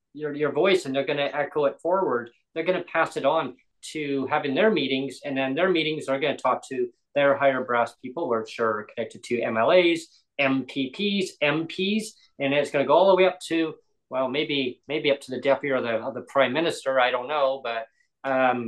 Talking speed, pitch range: 205 wpm, 125-160 Hz